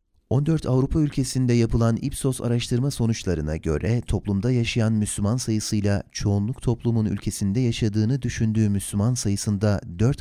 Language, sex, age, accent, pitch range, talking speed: Turkish, male, 40-59, native, 95-115 Hz, 120 wpm